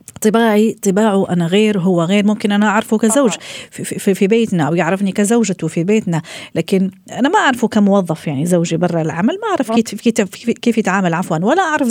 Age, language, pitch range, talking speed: 40-59, Arabic, 170-225 Hz, 165 wpm